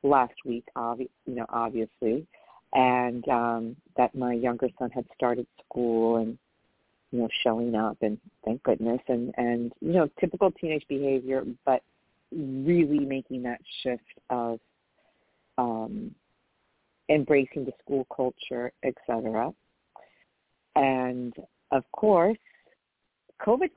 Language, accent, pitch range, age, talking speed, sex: English, American, 125-150 Hz, 40-59, 115 wpm, female